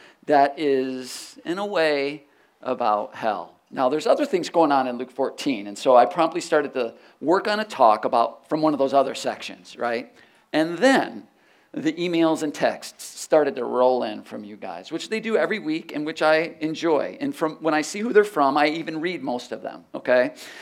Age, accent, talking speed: 50-69, American, 205 wpm